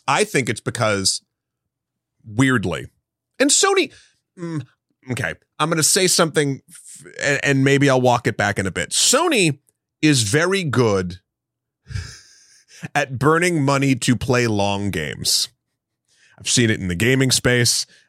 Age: 30-49